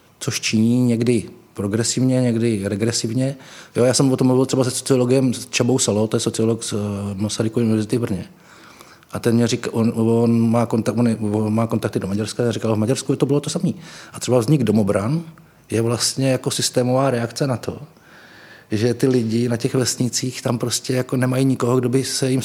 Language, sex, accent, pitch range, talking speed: Czech, male, native, 110-130 Hz, 200 wpm